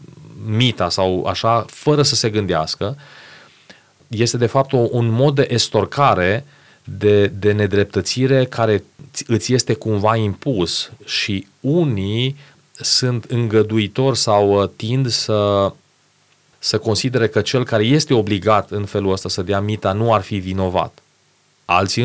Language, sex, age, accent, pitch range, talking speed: Romanian, male, 30-49, native, 100-130 Hz, 130 wpm